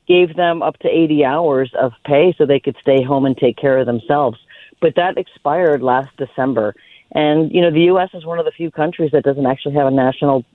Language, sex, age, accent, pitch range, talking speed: English, female, 40-59, American, 135-170 Hz, 235 wpm